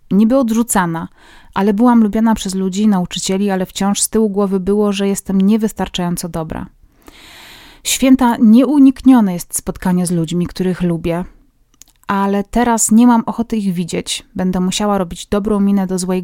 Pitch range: 185-230 Hz